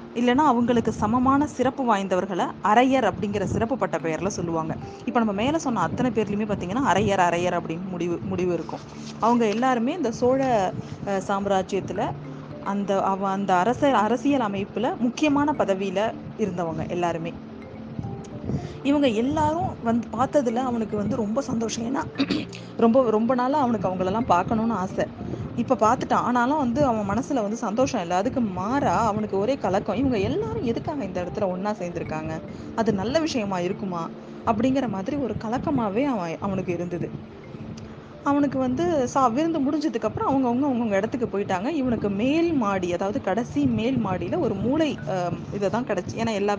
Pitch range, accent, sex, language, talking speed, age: 185-255 Hz, native, female, Tamil, 135 wpm, 20-39